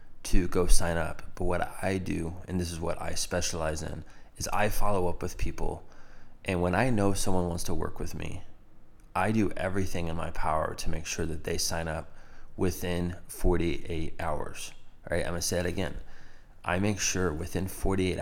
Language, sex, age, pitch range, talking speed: English, male, 20-39, 85-95 Hz, 195 wpm